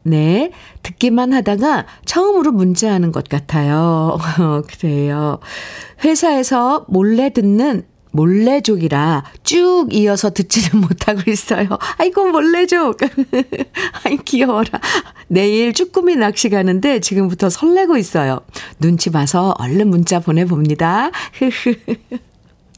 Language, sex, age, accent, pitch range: Korean, female, 50-69, native, 170-250 Hz